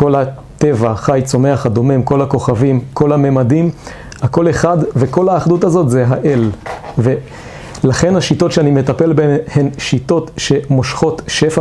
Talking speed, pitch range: 130 wpm, 130-155 Hz